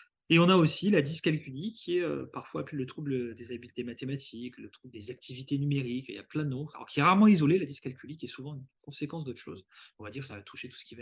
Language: French